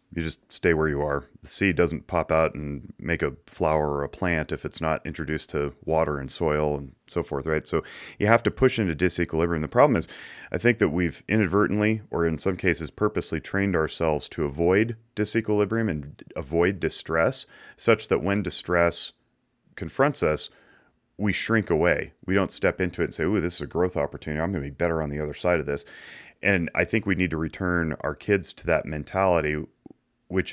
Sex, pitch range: male, 75-95 Hz